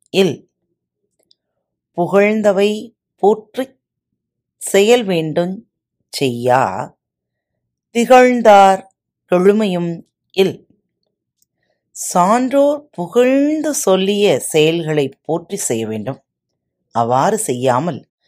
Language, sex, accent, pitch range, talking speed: Tamil, female, native, 145-215 Hz, 55 wpm